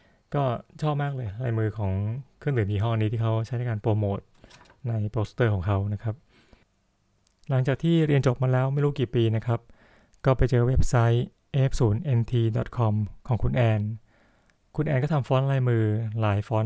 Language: Thai